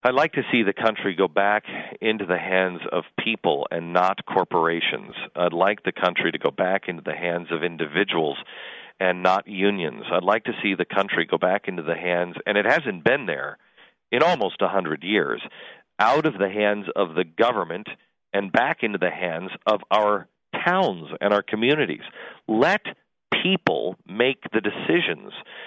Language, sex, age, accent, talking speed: English, male, 40-59, American, 175 wpm